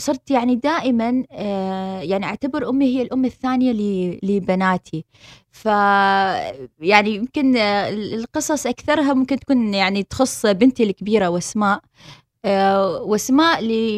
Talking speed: 105 wpm